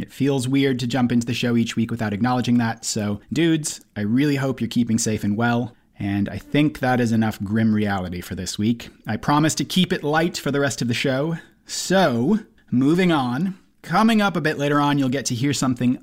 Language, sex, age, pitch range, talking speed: English, male, 30-49, 115-175 Hz, 225 wpm